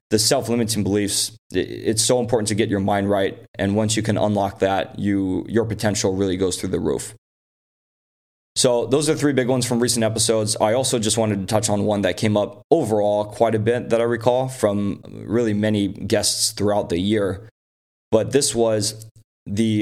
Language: English